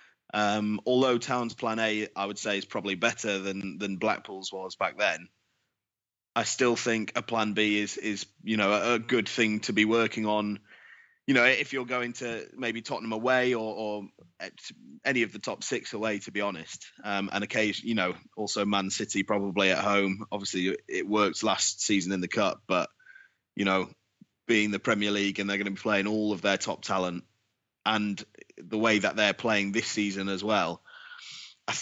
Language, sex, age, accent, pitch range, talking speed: English, male, 20-39, British, 100-120 Hz, 195 wpm